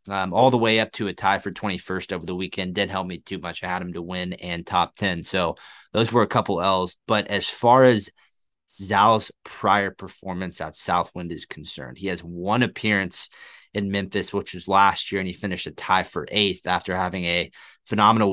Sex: male